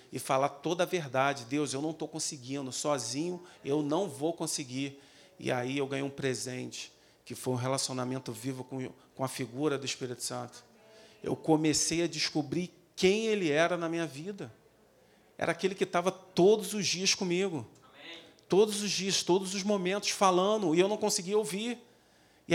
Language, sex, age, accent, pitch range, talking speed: Portuguese, male, 40-59, Brazilian, 135-175 Hz, 170 wpm